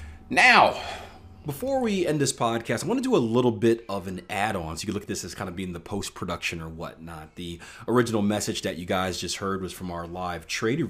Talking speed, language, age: 235 wpm, English, 30-49